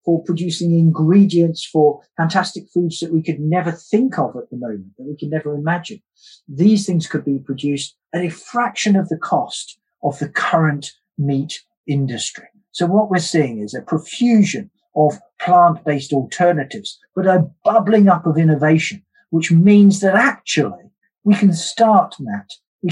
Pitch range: 140-180 Hz